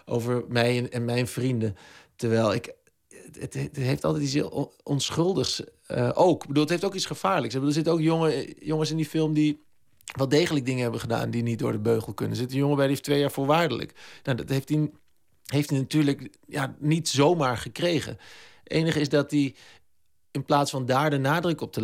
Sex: male